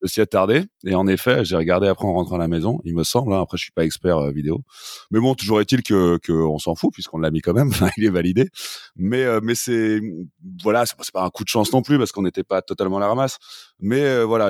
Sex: male